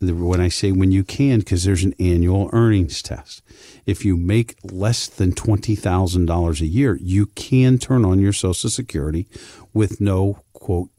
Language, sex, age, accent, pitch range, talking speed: English, male, 50-69, American, 85-110 Hz, 165 wpm